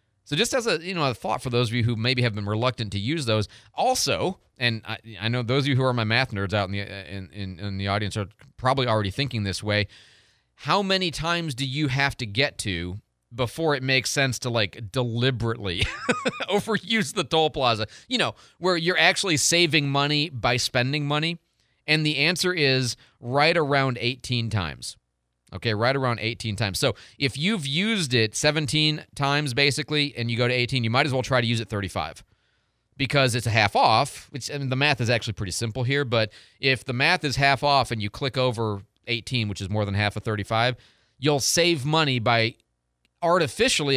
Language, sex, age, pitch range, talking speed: English, male, 30-49, 110-145 Hz, 205 wpm